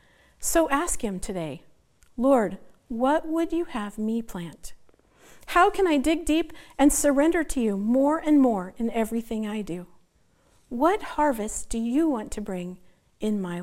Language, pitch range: English, 205-295 Hz